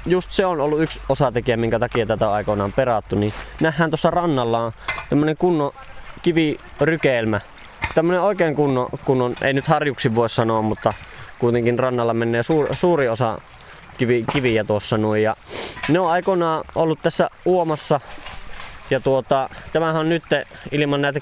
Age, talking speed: 20-39, 155 wpm